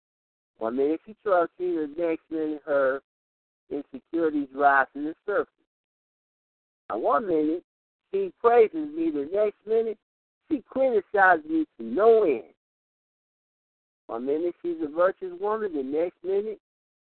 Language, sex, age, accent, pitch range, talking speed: English, male, 60-79, American, 140-210 Hz, 135 wpm